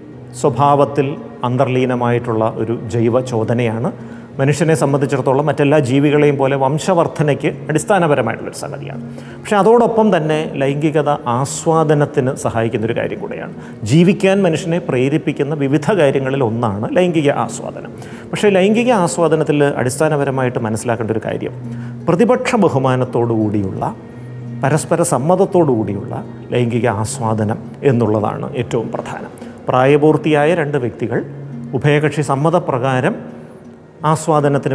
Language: Malayalam